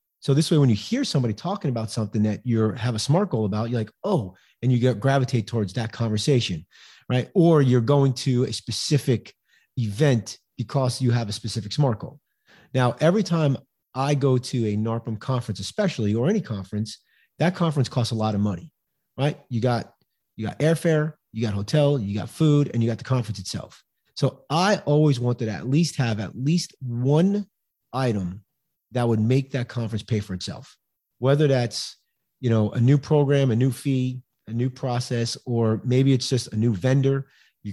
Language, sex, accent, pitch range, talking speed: English, male, American, 110-140 Hz, 190 wpm